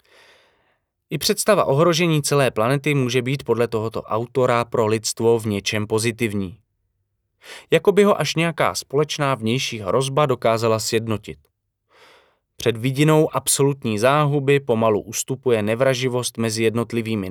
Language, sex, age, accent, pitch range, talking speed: Czech, male, 20-39, native, 110-140 Hz, 120 wpm